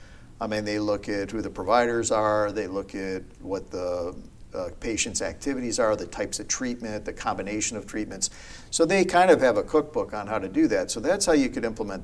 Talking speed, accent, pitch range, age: 220 wpm, American, 105-125 Hz, 50-69